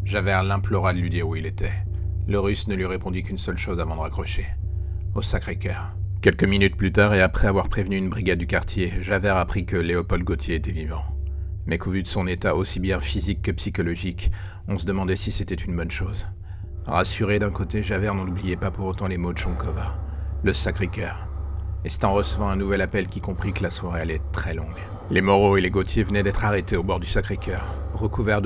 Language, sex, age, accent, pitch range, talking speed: French, male, 40-59, French, 90-100 Hz, 215 wpm